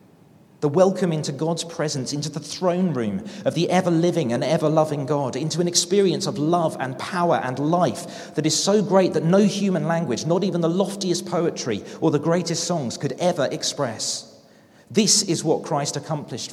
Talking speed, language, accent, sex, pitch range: 185 wpm, English, British, male, 130-175 Hz